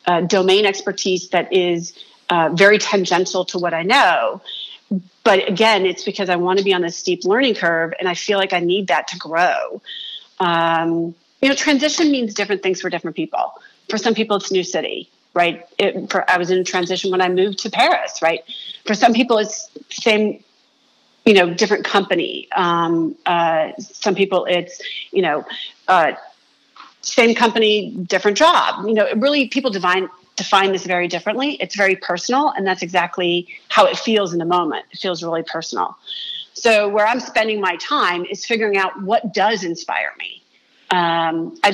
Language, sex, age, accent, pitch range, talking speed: English, female, 40-59, American, 175-215 Hz, 180 wpm